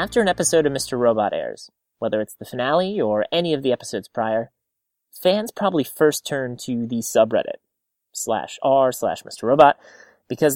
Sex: male